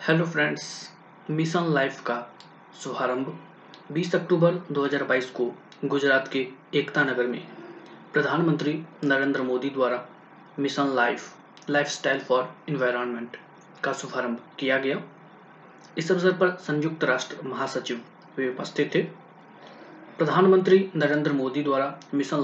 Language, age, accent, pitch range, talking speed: Hindi, 20-39, native, 130-180 Hz, 110 wpm